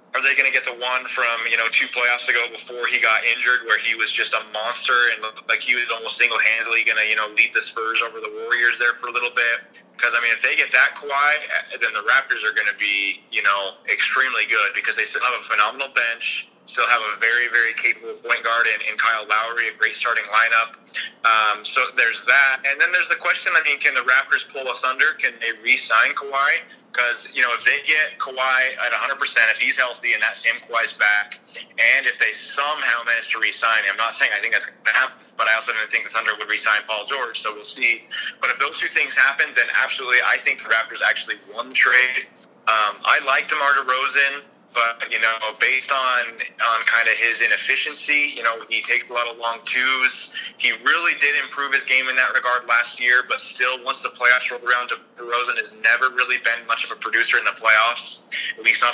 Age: 30-49